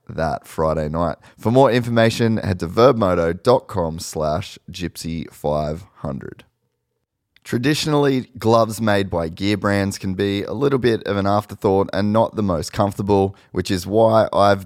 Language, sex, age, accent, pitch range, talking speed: English, male, 30-49, Australian, 85-110 Hz, 140 wpm